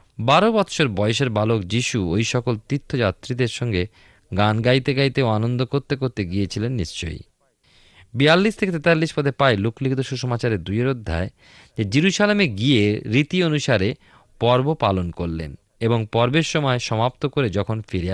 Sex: male